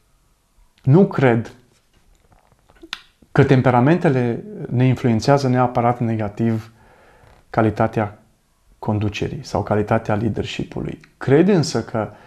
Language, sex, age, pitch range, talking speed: Romanian, male, 30-49, 115-150 Hz, 80 wpm